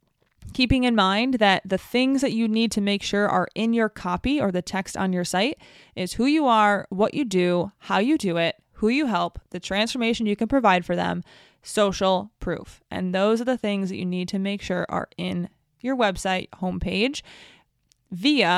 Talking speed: 200 wpm